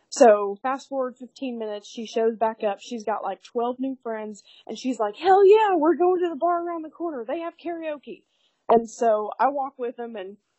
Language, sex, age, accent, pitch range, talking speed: English, female, 20-39, American, 210-250 Hz, 215 wpm